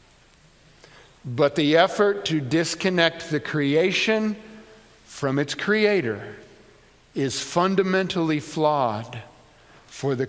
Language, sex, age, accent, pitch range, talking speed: English, male, 50-69, American, 140-200 Hz, 85 wpm